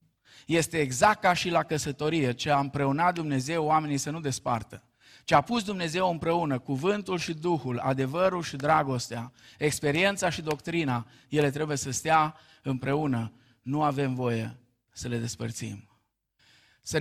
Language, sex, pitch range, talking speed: Romanian, male, 125-160 Hz, 140 wpm